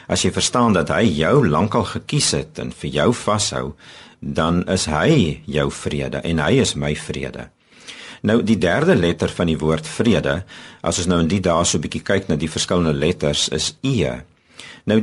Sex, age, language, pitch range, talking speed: male, 50-69, Dutch, 80-110 Hz, 200 wpm